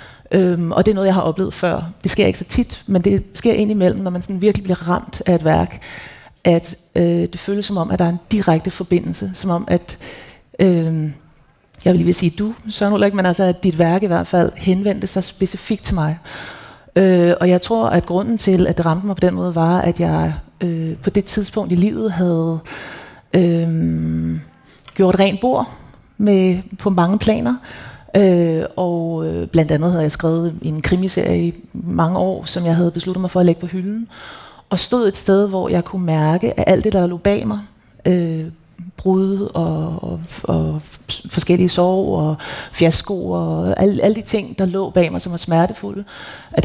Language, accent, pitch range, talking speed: Danish, native, 165-195 Hz, 200 wpm